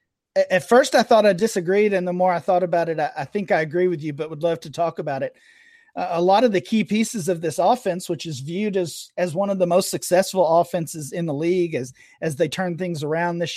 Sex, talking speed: male, 255 wpm